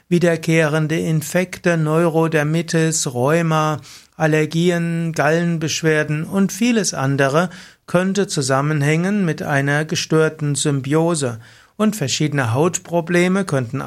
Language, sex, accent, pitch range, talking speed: German, male, German, 140-170 Hz, 80 wpm